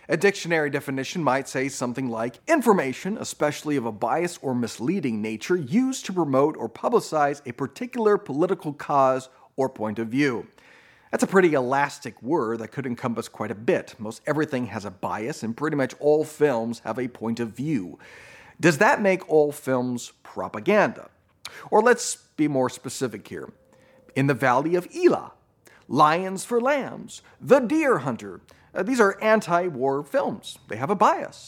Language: English